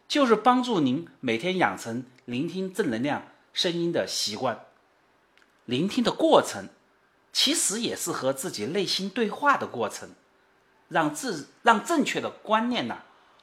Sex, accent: male, native